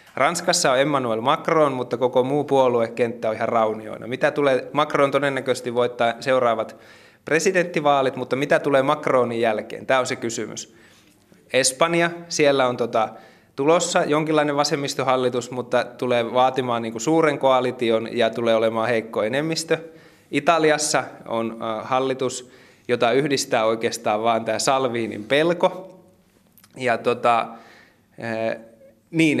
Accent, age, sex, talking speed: native, 20-39, male, 120 wpm